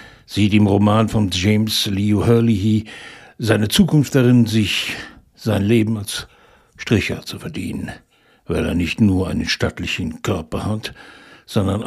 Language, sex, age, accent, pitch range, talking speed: German, male, 60-79, German, 100-125 Hz, 130 wpm